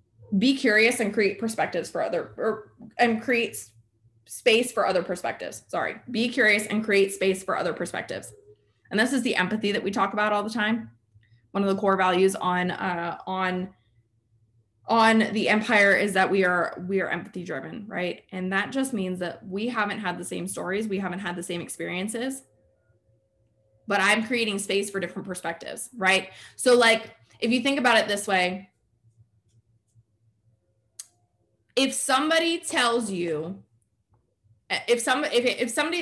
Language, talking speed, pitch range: English, 165 wpm, 130-225 Hz